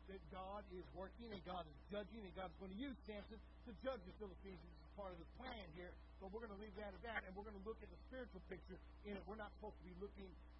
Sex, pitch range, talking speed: male, 180-255 Hz, 275 wpm